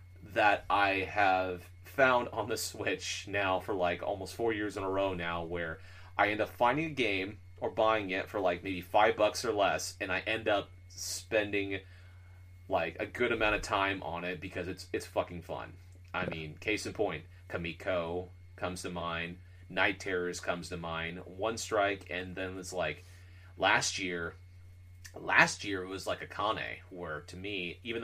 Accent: American